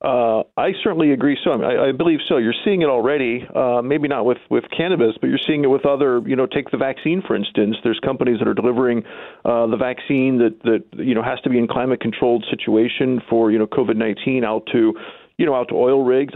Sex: male